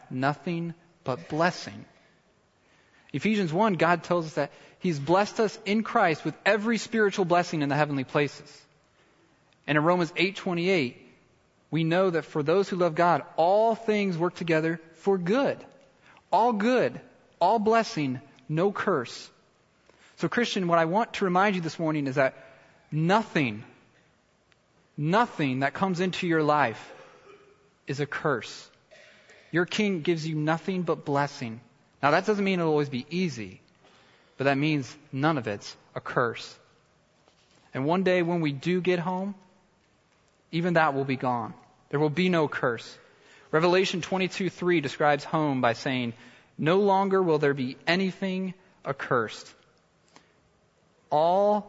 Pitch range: 145-190 Hz